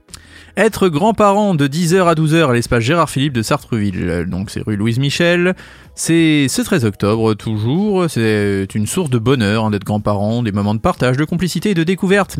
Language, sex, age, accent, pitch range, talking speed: French, male, 30-49, French, 115-175 Hz, 190 wpm